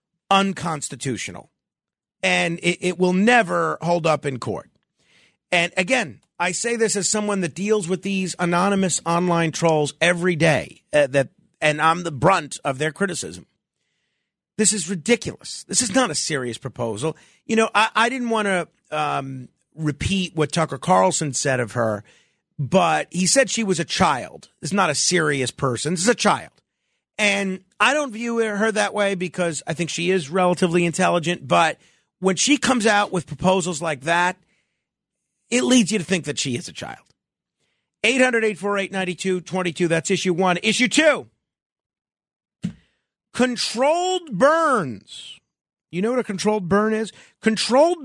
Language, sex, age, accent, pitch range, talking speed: English, male, 40-59, American, 160-220 Hz, 155 wpm